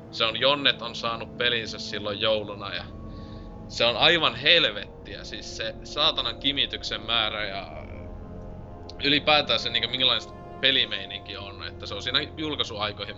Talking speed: 135 wpm